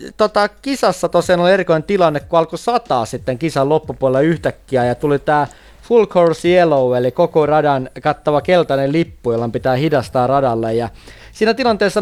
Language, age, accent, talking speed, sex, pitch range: Finnish, 30-49, native, 160 wpm, male, 145-175 Hz